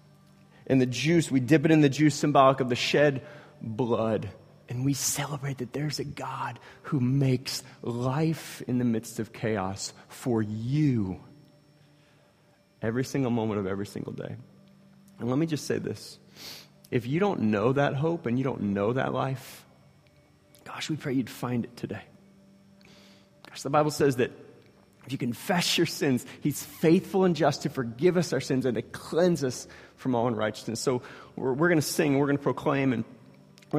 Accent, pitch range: American, 120-150 Hz